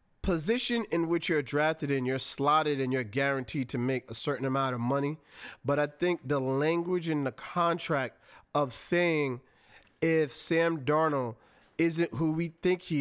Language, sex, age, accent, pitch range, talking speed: English, male, 30-49, American, 135-165 Hz, 165 wpm